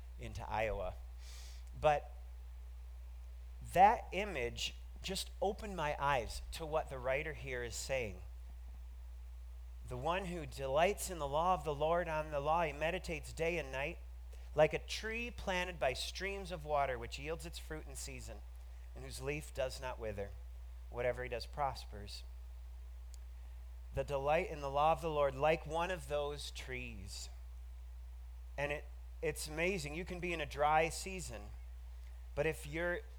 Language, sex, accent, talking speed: English, male, American, 155 wpm